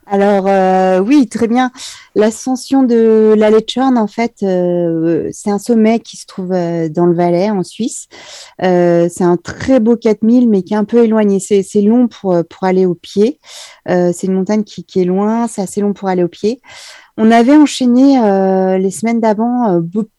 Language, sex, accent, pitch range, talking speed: French, female, French, 180-225 Hz, 200 wpm